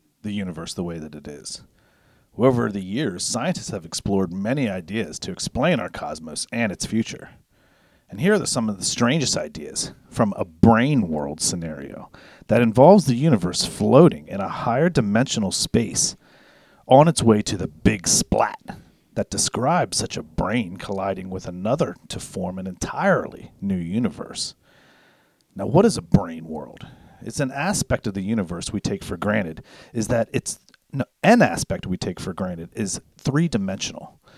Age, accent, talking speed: 40-59, American, 160 wpm